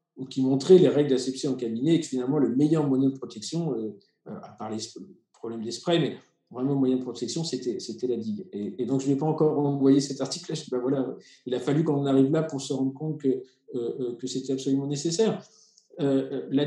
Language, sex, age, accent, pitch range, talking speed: French, male, 50-69, French, 130-160 Hz, 210 wpm